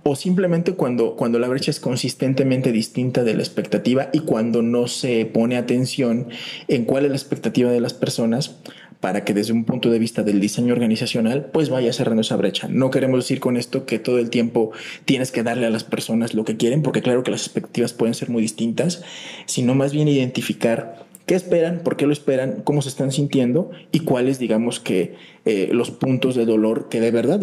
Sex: male